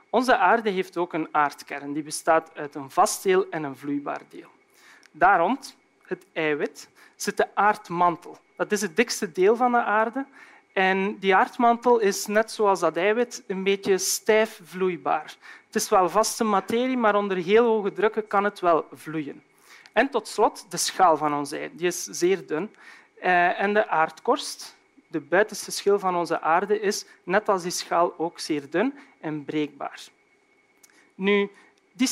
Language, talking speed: Dutch, 165 wpm